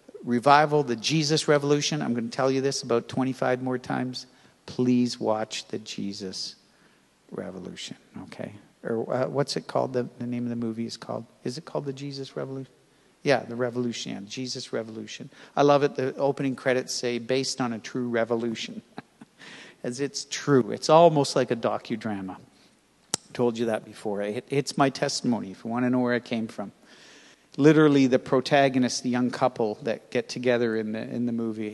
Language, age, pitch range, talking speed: English, 50-69, 120-145 Hz, 180 wpm